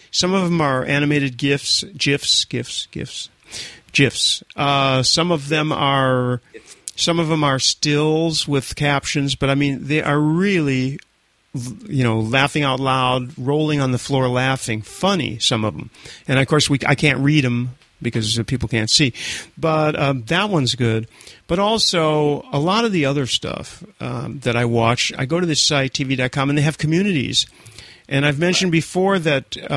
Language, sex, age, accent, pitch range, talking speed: English, male, 40-59, American, 125-155 Hz, 185 wpm